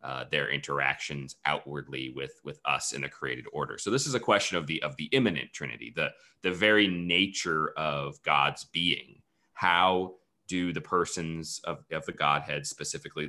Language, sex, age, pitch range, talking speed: English, male, 30-49, 75-95 Hz, 170 wpm